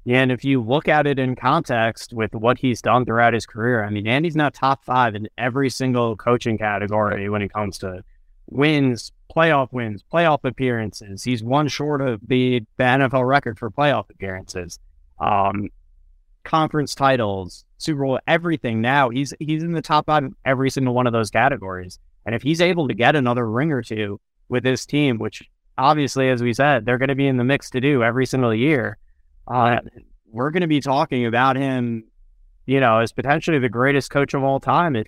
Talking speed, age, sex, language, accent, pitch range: 195 wpm, 30-49, male, English, American, 110-145 Hz